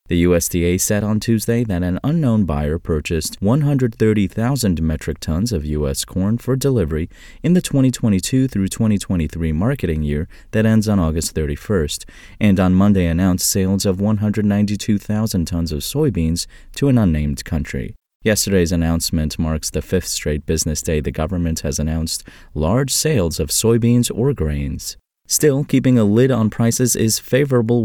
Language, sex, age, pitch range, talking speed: English, male, 30-49, 80-110 Hz, 150 wpm